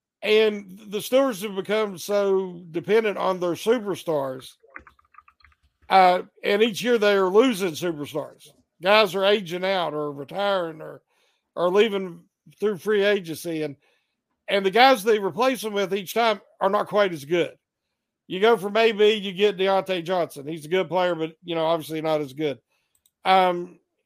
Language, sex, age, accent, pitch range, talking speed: English, male, 50-69, American, 175-220 Hz, 160 wpm